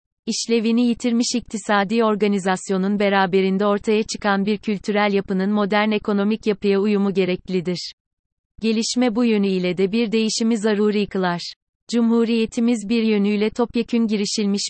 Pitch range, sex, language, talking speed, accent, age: 195-220 Hz, female, Turkish, 115 wpm, native, 30-49